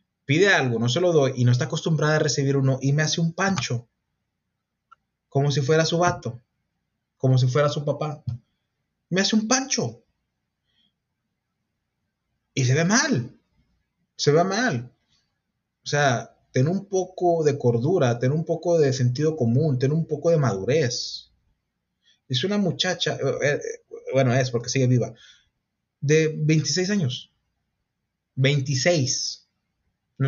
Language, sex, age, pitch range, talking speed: Spanish, male, 30-49, 120-165 Hz, 140 wpm